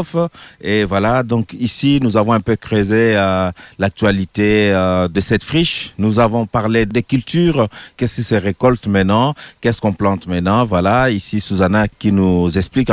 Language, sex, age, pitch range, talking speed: French, male, 40-59, 100-125 Hz, 160 wpm